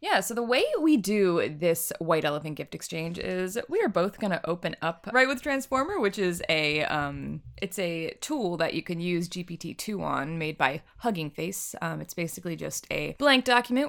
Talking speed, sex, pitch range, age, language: 200 wpm, female, 160-200 Hz, 20-39, English